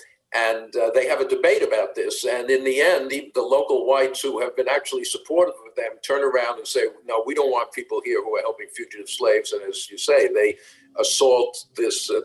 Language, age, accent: English, 50-69, American